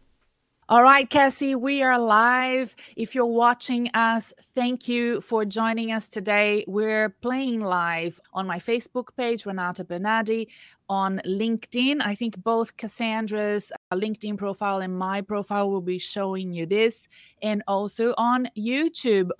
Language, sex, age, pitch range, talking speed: English, female, 20-39, 185-225 Hz, 140 wpm